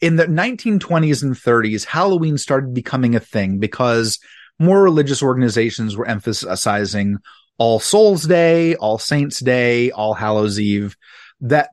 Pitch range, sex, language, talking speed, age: 115-160 Hz, male, English, 135 wpm, 30-49